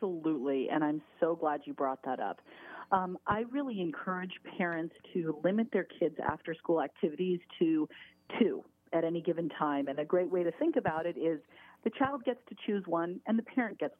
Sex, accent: female, American